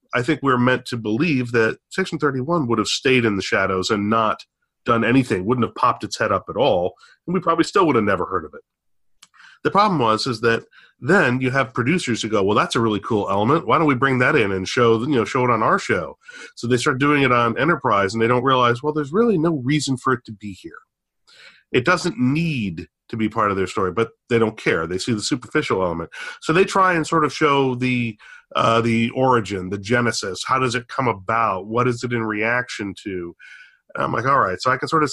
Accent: American